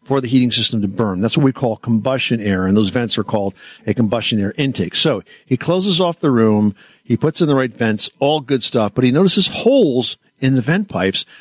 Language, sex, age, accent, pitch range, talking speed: English, male, 50-69, American, 115-155 Hz, 230 wpm